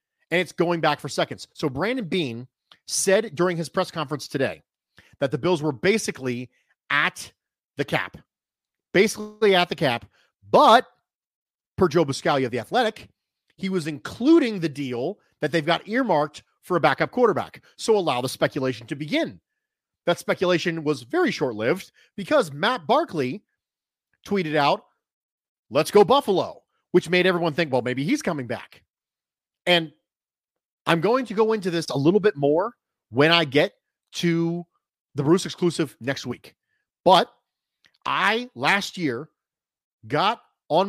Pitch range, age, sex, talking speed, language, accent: 150-205 Hz, 40-59, male, 150 wpm, English, American